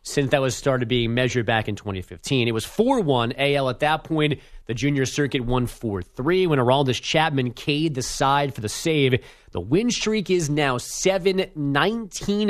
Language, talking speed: English, 185 wpm